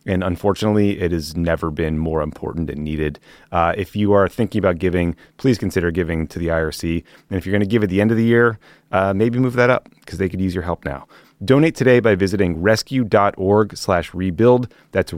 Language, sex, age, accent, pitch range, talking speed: English, male, 30-49, American, 95-120 Hz, 220 wpm